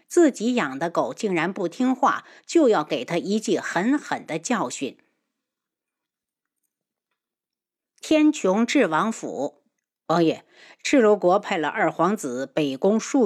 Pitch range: 175-265 Hz